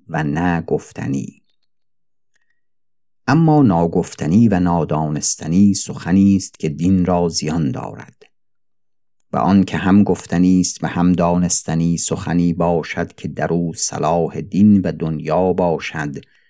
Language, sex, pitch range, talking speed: Persian, male, 85-95 Hz, 115 wpm